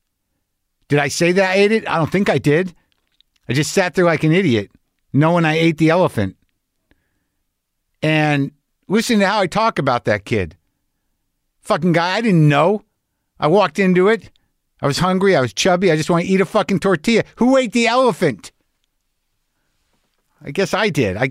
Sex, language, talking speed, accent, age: male, English, 185 wpm, American, 50-69